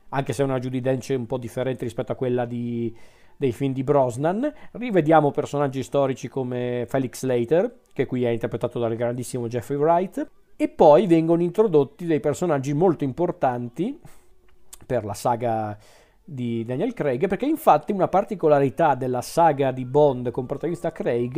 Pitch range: 120-155 Hz